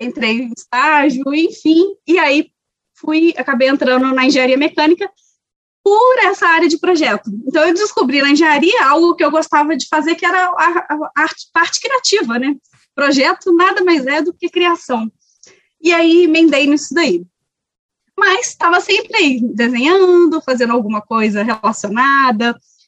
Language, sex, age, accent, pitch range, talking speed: Portuguese, female, 20-39, Brazilian, 245-335 Hz, 145 wpm